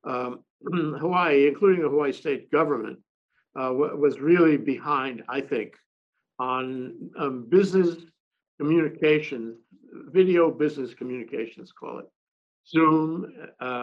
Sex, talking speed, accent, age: male, 105 wpm, American, 60-79